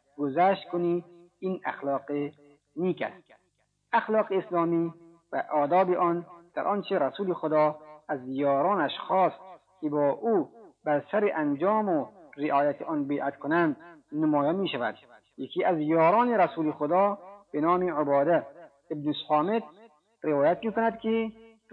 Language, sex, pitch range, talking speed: Persian, male, 145-195 Hz, 120 wpm